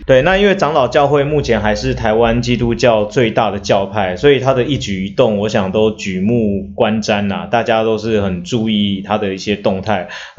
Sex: male